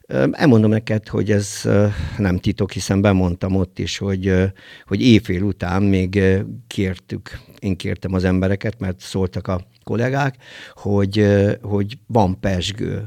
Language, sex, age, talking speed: Hungarian, male, 50-69, 130 wpm